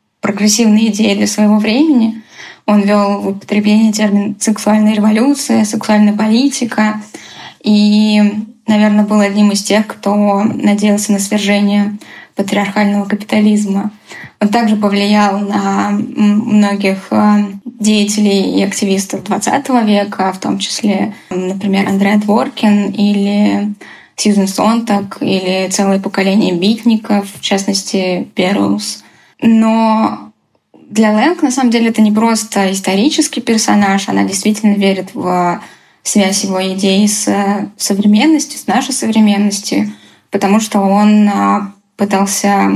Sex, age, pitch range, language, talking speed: female, 10-29, 200-215 Hz, Russian, 110 wpm